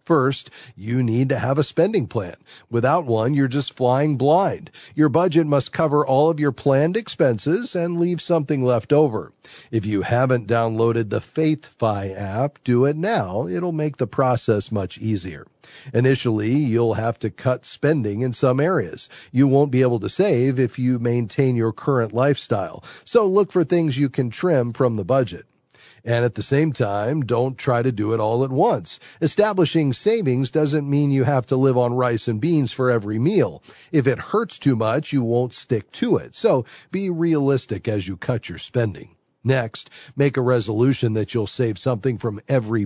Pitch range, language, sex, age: 115-145 Hz, English, male, 40-59